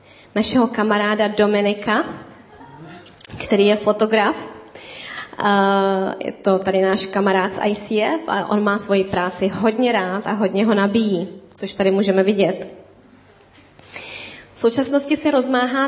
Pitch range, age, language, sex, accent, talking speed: 195-230 Hz, 20-39, Czech, female, native, 120 wpm